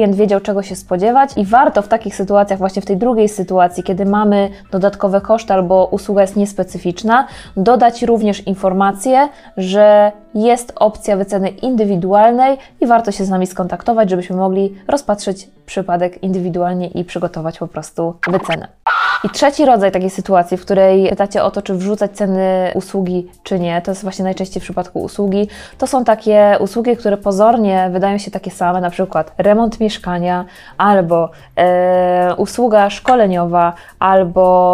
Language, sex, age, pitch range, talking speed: Polish, female, 20-39, 185-215 Hz, 150 wpm